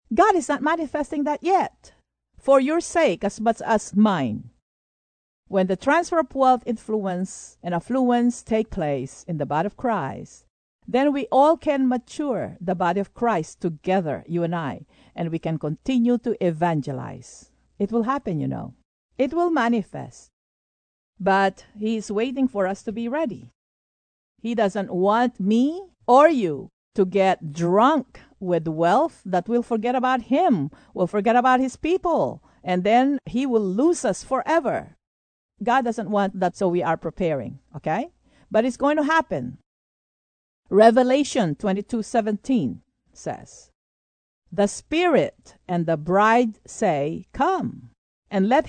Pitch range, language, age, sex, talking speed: 180-270 Hz, English, 50-69, female, 145 wpm